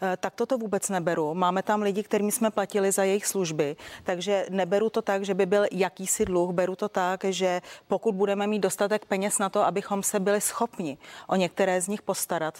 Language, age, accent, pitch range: Czech, 30-49, native, 180-205 Hz